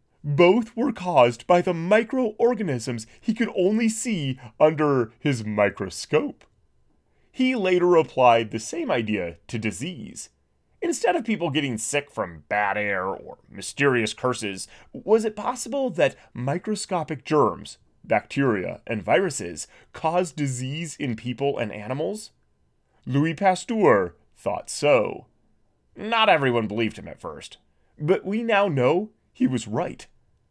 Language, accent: English, American